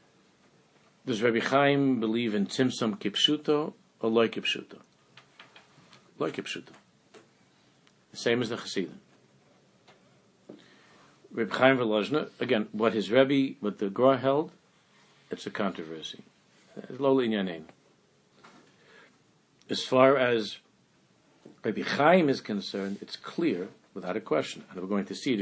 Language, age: English, 50-69